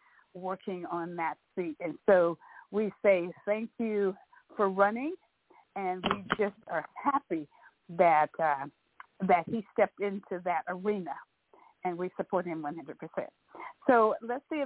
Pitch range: 180-215 Hz